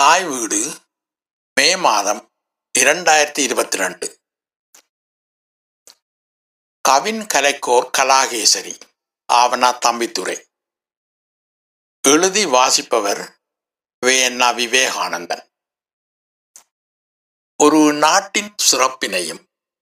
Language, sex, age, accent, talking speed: Tamil, male, 60-79, native, 60 wpm